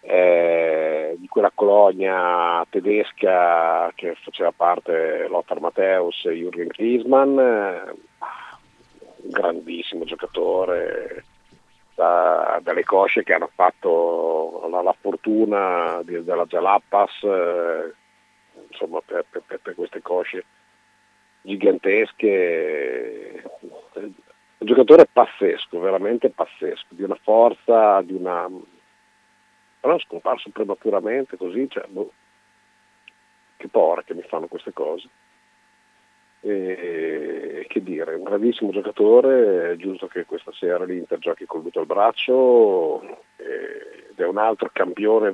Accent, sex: native, male